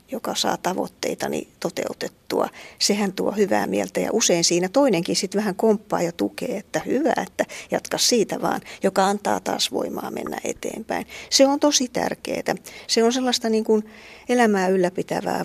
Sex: female